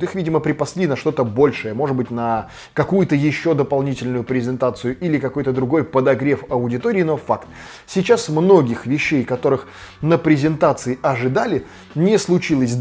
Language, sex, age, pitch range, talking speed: Russian, male, 20-39, 130-185 Hz, 135 wpm